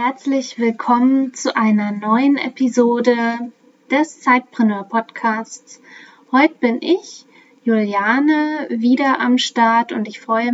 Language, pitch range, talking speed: German, 225-270 Hz, 100 wpm